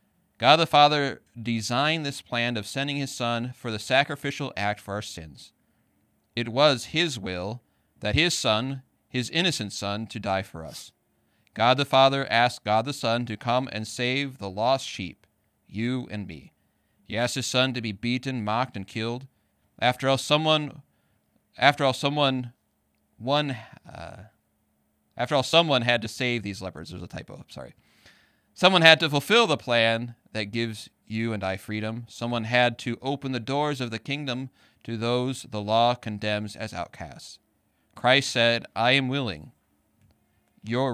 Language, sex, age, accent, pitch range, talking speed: English, male, 30-49, American, 105-130 Hz, 165 wpm